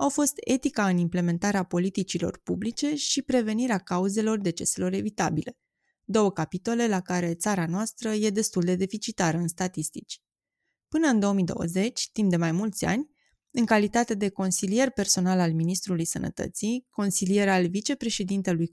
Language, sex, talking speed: Romanian, female, 140 wpm